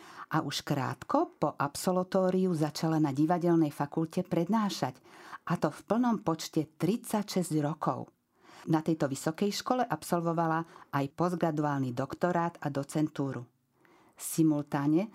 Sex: female